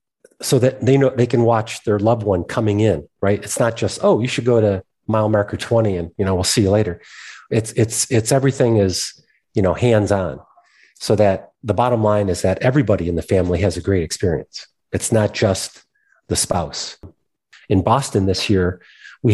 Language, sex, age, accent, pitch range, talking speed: English, male, 40-59, American, 100-125 Hz, 200 wpm